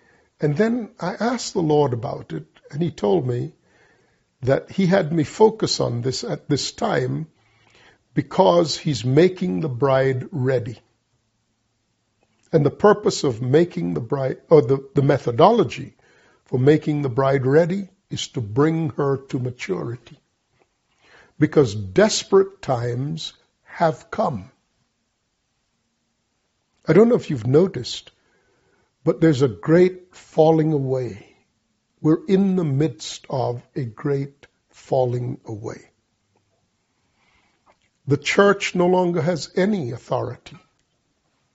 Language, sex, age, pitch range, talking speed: English, male, 50-69, 125-175 Hz, 120 wpm